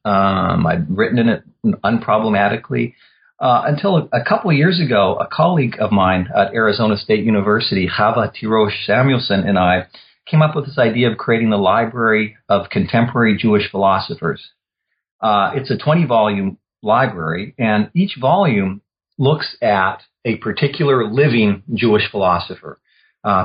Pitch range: 100-140 Hz